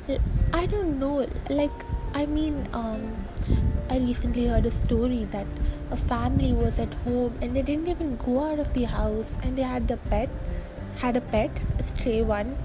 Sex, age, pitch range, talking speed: female, 20-39, 240-305 Hz, 180 wpm